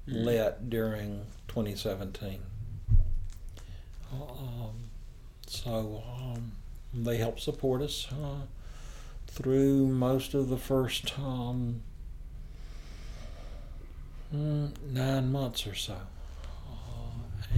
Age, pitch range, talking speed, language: 60-79, 105-125 Hz, 80 wpm, English